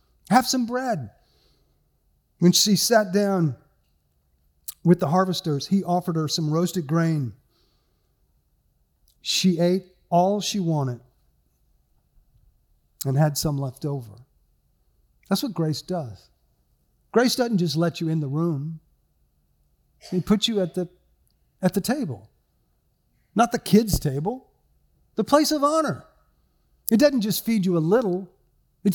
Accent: American